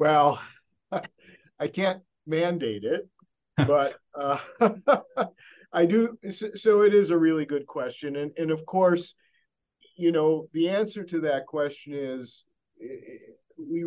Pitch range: 115-165 Hz